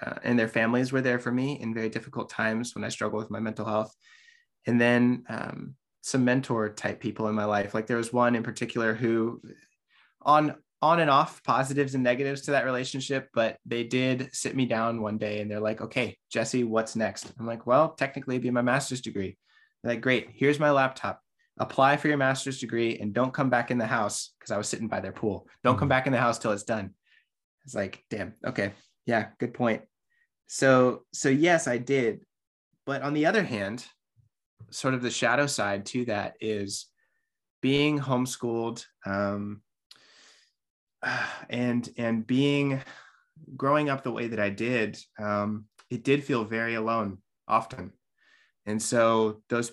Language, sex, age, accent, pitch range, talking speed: English, male, 20-39, American, 110-130 Hz, 185 wpm